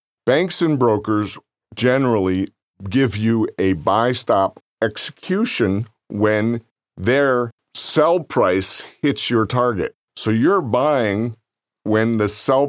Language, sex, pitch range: English, male, 95-115 Hz